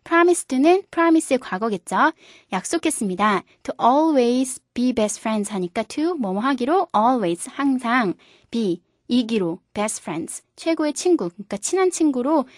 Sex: female